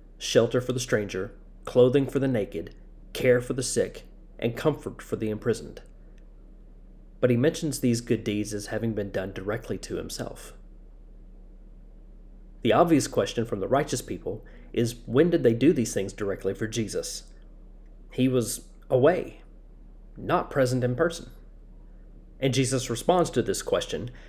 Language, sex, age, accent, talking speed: English, male, 40-59, American, 150 wpm